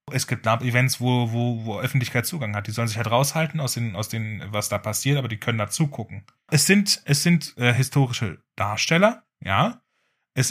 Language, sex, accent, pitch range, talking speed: German, male, German, 115-150 Hz, 205 wpm